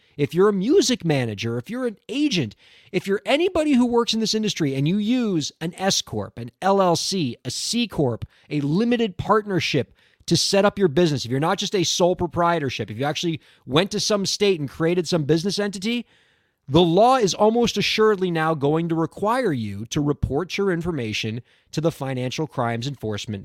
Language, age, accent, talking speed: English, 30-49, American, 185 wpm